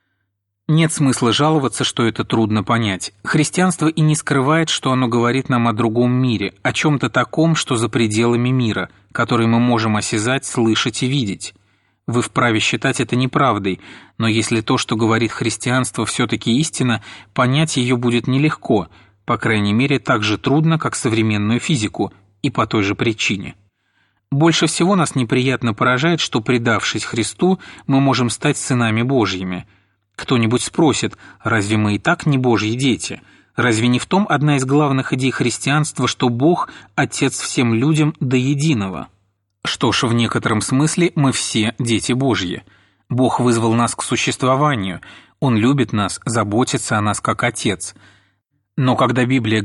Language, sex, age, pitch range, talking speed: Russian, male, 30-49, 110-135 Hz, 150 wpm